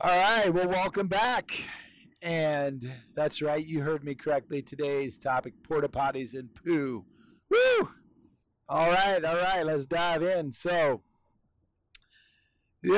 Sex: male